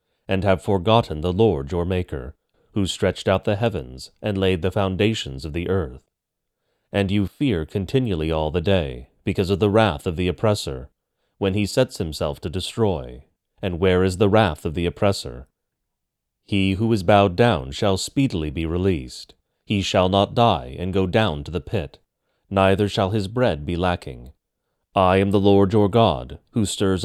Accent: American